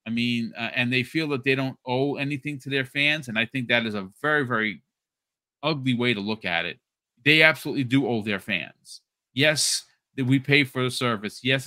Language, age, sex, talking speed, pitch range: English, 40-59, male, 210 wpm, 115-140 Hz